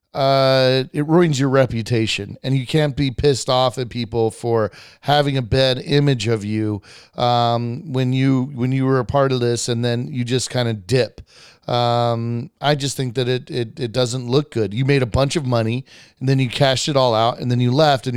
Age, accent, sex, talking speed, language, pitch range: 40-59, American, male, 220 wpm, English, 120-150 Hz